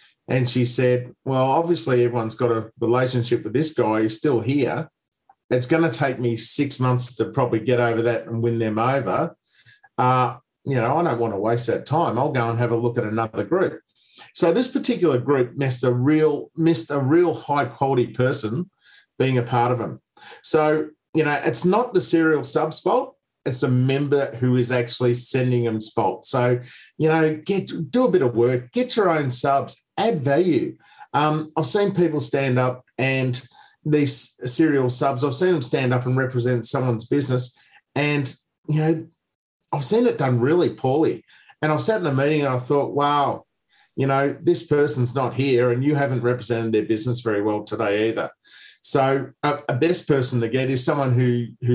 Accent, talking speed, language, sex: Australian, 185 wpm, English, male